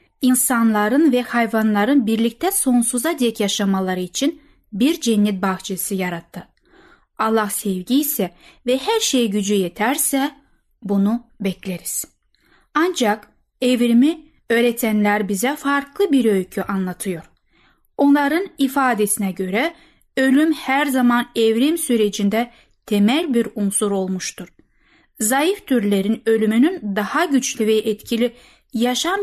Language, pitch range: Turkish, 210-270 Hz